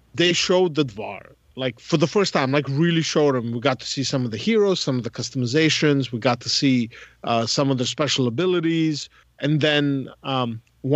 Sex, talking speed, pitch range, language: male, 210 wpm, 130-160 Hz, English